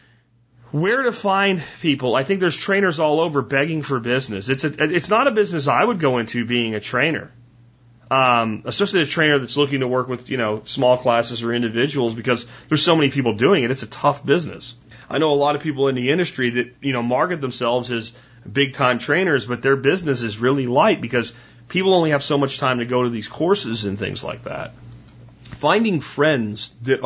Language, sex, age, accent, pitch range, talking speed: English, male, 40-59, American, 120-140 Hz, 210 wpm